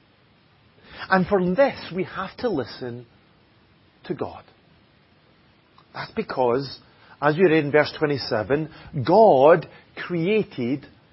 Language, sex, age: English, male, 40-59